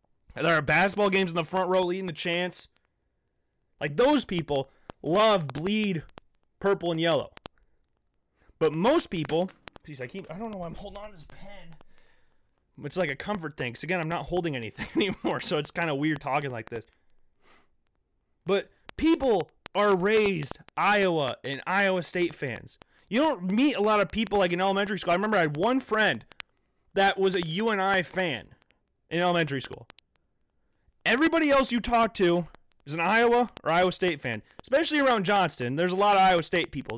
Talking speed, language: 180 wpm, English